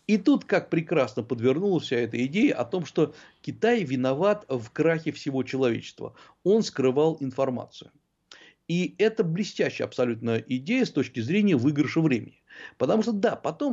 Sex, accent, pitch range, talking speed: male, native, 120-160 Hz, 150 wpm